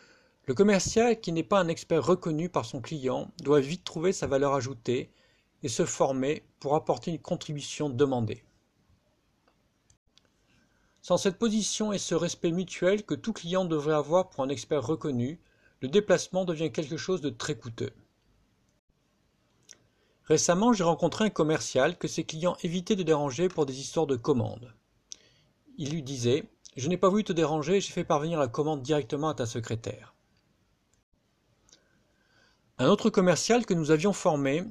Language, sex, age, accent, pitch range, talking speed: French, male, 50-69, French, 140-185 Hz, 155 wpm